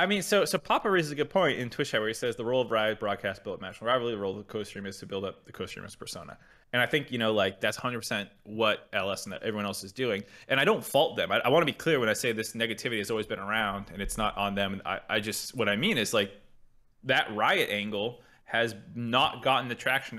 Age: 20-39